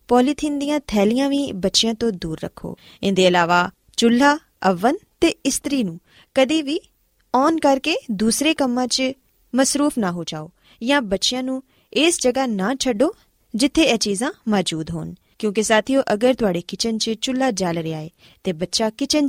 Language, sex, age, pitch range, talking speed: Punjabi, female, 20-39, 185-250 Hz, 145 wpm